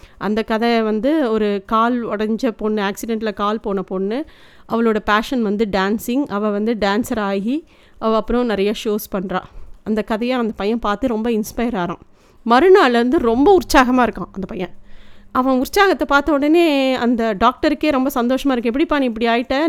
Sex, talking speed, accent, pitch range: female, 155 wpm, native, 215-265 Hz